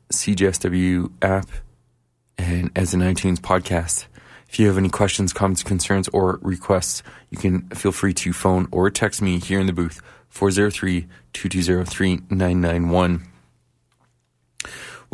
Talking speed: 120 wpm